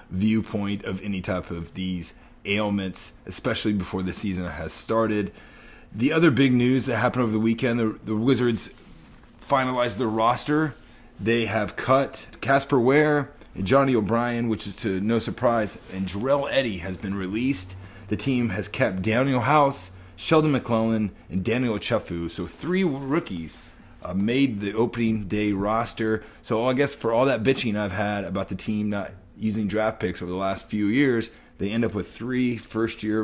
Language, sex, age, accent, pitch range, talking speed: English, male, 30-49, American, 95-120 Hz, 170 wpm